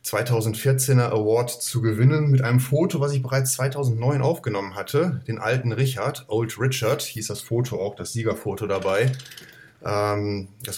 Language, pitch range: German, 110-130 Hz